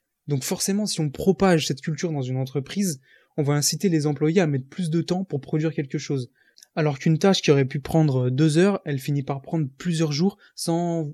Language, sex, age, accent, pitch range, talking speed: French, male, 20-39, French, 145-175 Hz, 215 wpm